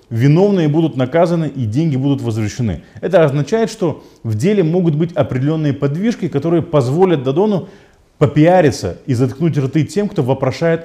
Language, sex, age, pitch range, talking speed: Russian, male, 30-49, 125-185 Hz, 145 wpm